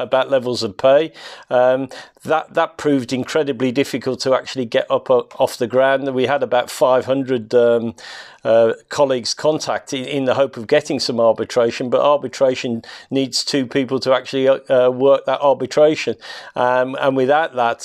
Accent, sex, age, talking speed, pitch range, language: British, male, 40-59, 170 wpm, 125-140 Hz, English